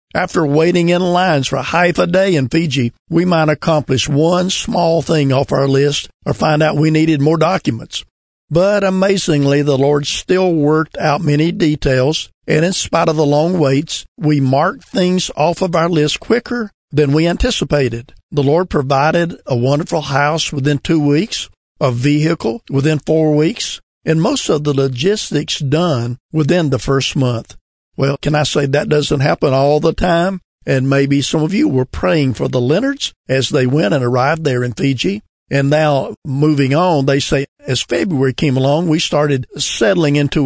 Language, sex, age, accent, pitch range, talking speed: English, male, 50-69, American, 135-165 Hz, 175 wpm